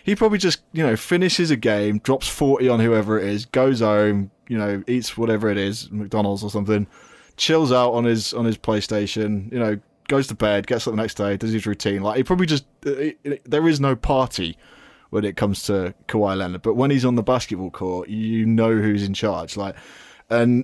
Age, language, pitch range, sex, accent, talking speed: 20-39, English, 100-115 Hz, male, British, 220 wpm